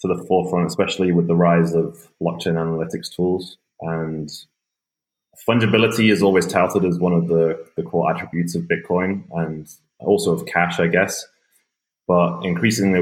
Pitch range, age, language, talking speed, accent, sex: 80-90 Hz, 20-39, English, 150 wpm, British, male